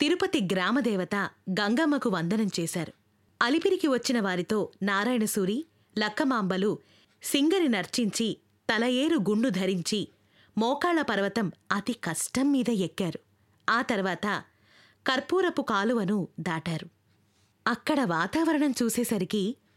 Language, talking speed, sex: Telugu, 80 wpm, female